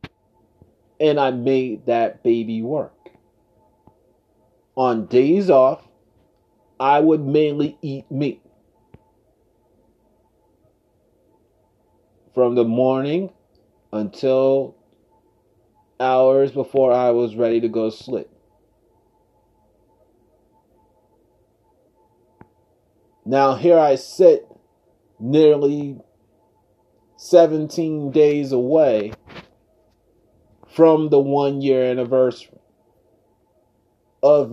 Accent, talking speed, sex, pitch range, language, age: American, 70 wpm, male, 115-145 Hz, English, 30-49